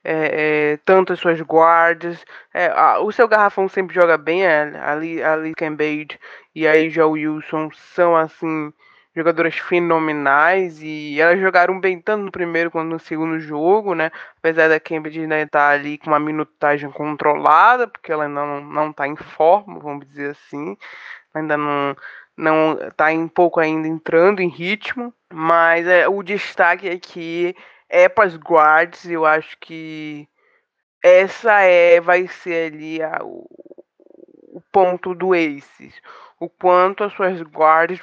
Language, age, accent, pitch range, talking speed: Portuguese, 20-39, Brazilian, 155-180 Hz, 160 wpm